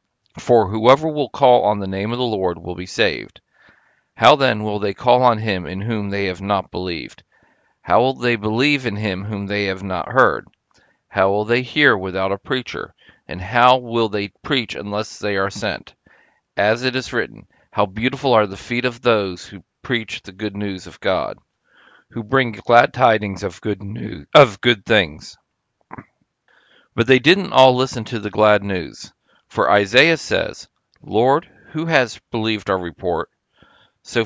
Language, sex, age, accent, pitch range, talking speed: English, male, 40-59, American, 100-120 Hz, 175 wpm